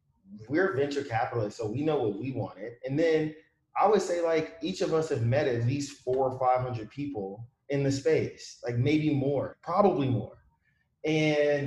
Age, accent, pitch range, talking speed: 30-49, American, 120-140 Hz, 185 wpm